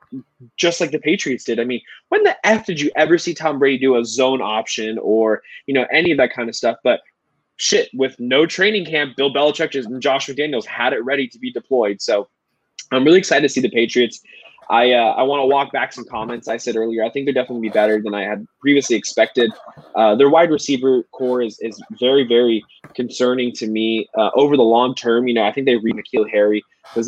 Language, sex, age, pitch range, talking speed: English, male, 20-39, 110-150 Hz, 225 wpm